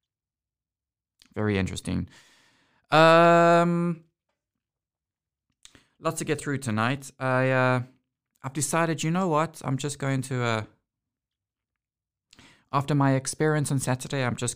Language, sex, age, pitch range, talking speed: English, male, 20-39, 100-130 Hz, 105 wpm